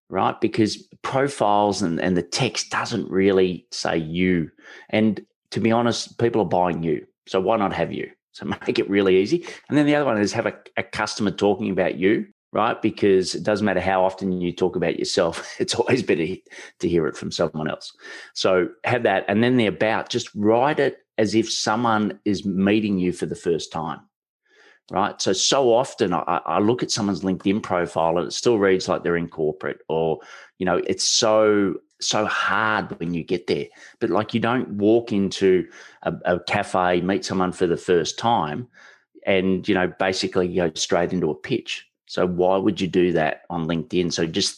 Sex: male